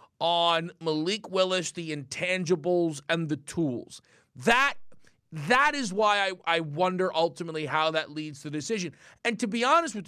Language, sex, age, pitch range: English, male, 30-49, 150-215 Hz